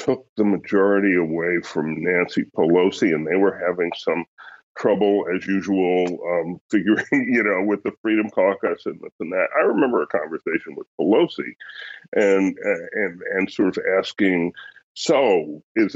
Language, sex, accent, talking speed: English, female, American, 160 wpm